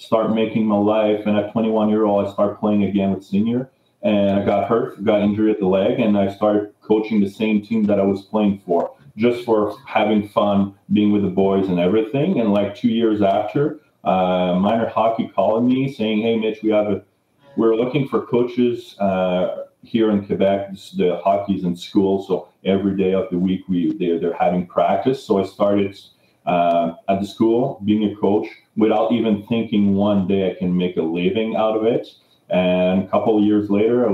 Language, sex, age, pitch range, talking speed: English, male, 30-49, 95-110 Hz, 205 wpm